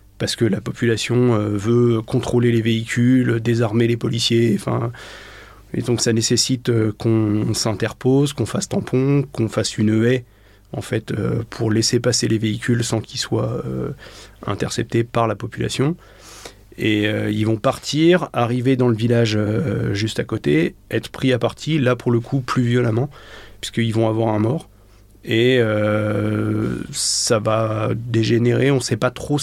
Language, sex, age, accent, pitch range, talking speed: French, male, 30-49, French, 110-125 Hz, 155 wpm